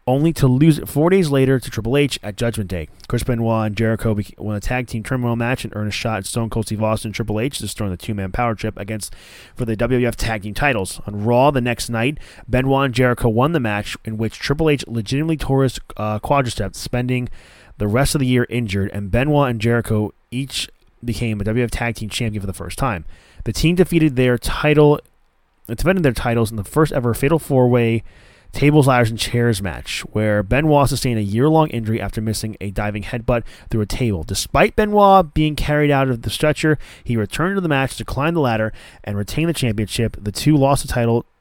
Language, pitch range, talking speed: English, 105-135 Hz, 215 wpm